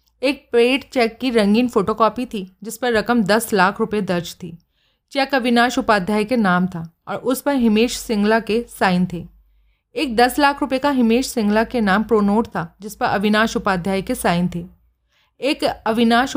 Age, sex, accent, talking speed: 30-49, female, native, 180 wpm